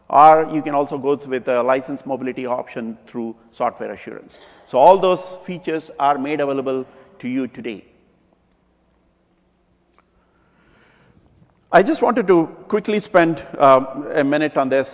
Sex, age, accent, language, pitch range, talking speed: male, 50-69, Indian, English, 135-170 Hz, 135 wpm